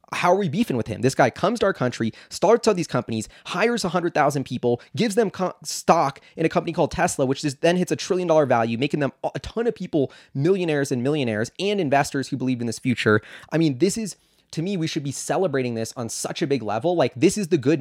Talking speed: 240 wpm